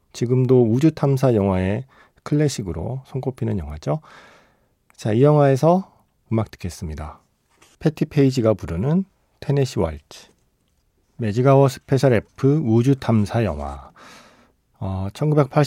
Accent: native